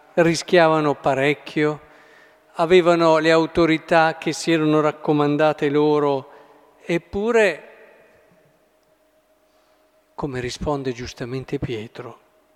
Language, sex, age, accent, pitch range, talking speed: Italian, male, 50-69, native, 150-170 Hz, 70 wpm